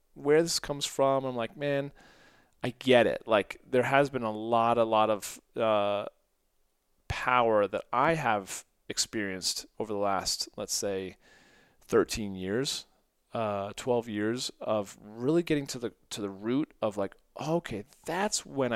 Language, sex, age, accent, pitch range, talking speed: English, male, 30-49, American, 110-140 Hz, 155 wpm